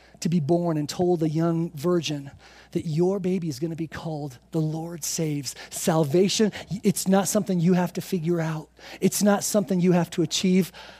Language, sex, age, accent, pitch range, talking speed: English, male, 40-59, American, 150-180 Hz, 190 wpm